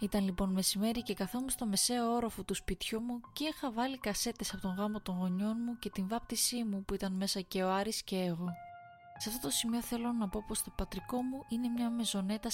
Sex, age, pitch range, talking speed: female, 20-39, 190-235 Hz, 225 wpm